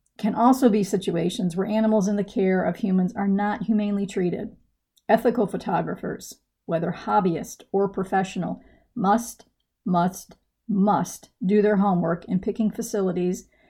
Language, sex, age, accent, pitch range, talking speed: English, female, 40-59, American, 185-220 Hz, 130 wpm